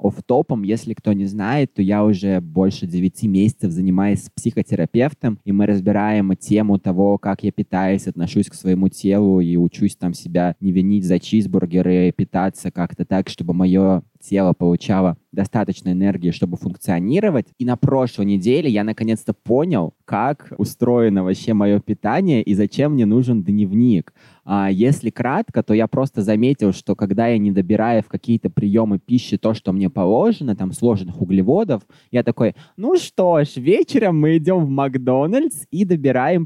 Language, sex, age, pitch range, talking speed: Russian, male, 20-39, 100-135 Hz, 160 wpm